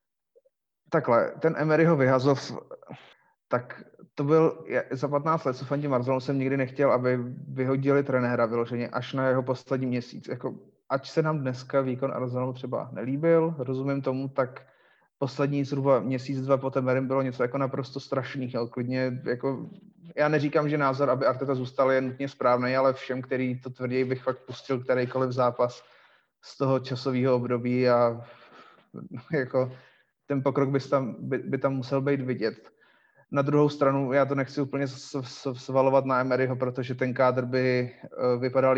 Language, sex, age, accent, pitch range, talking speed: Czech, male, 30-49, native, 125-140 Hz, 160 wpm